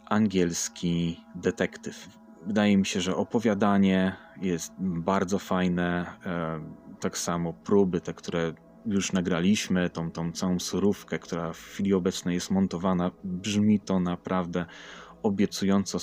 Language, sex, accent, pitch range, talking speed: Polish, male, native, 90-100 Hz, 115 wpm